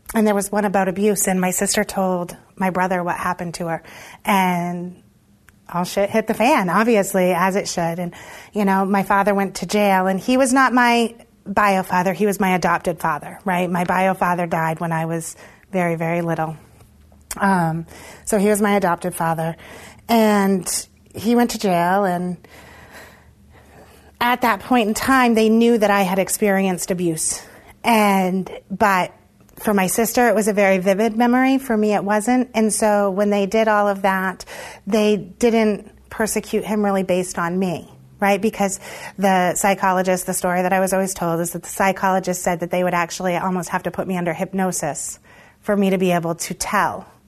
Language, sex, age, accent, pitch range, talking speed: English, female, 30-49, American, 175-210 Hz, 185 wpm